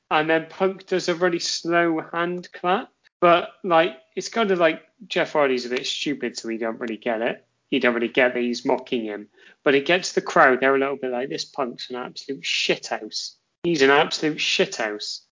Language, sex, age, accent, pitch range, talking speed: English, male, 30-49, British, 130-185 Hz, 220 wpm